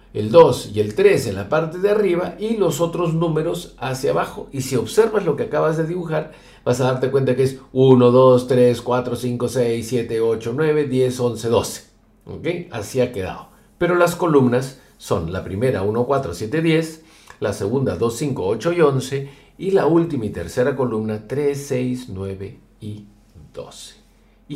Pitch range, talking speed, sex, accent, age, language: 105-140 Hz, 185 wpm, male, Mexican, 50-69, Spanish